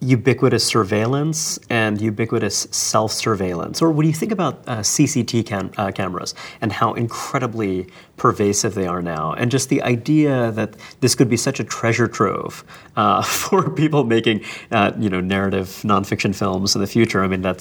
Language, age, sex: English, 30-49, male